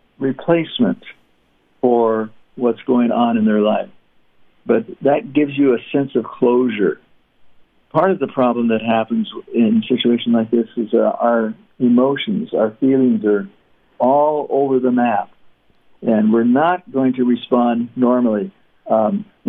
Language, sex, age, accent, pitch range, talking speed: English, male, 60-79, American, 110-130 Hz, 140 wpm